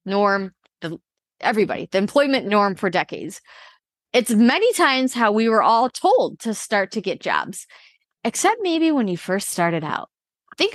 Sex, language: female, English